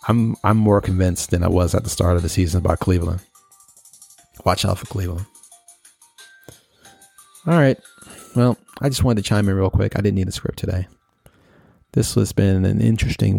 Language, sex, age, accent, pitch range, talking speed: English, male, 30-49, American, 95-120 Hz, 185 wpm